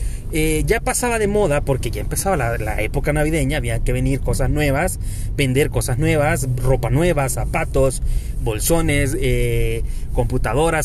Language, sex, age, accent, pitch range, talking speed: Spanish, male, 30-49, Mexican, 135-195 Hz, 145 wpm